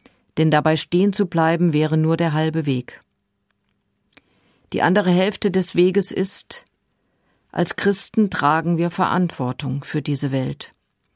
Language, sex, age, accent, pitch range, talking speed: German, female, 50-69, German, 145-185 Hz, 130 wpm